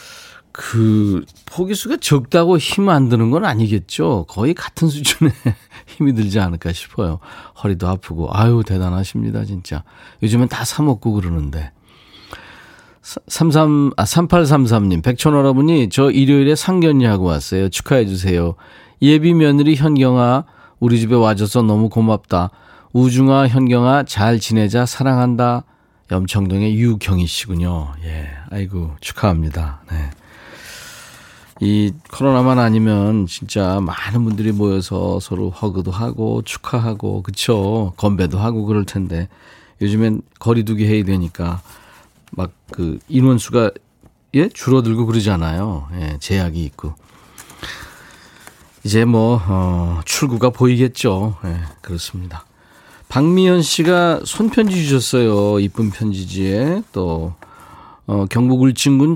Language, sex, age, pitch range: Korean, male, 40-59, 95-130 Hz